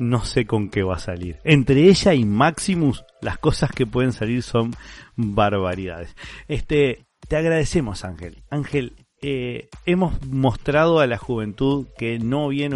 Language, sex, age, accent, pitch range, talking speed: Spanish, male, 40-59, Argentinian, 110-150 Hz, 150 wpm